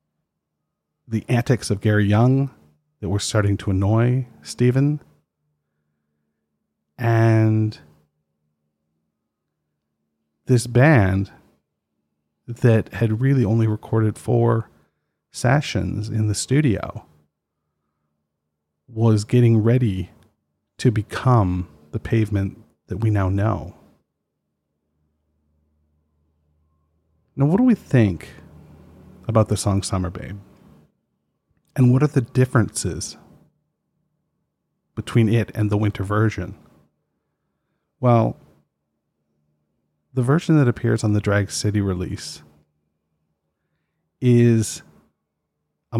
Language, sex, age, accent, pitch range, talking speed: English, male, 40-59, American, 75-115 Hz, 90 wpm